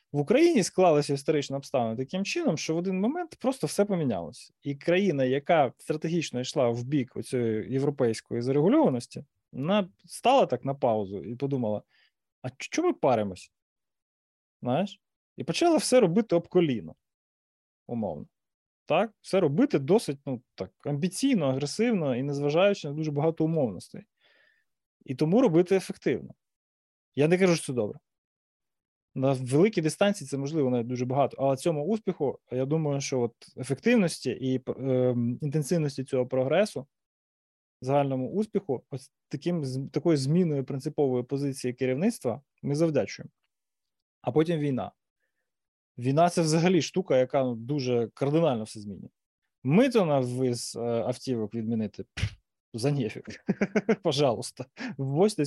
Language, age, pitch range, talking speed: Ukrainian, 20-39, 130-175 Hz, 130 wpm